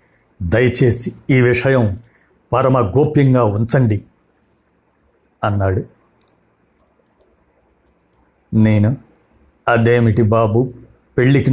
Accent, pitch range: native, 115-135 Hz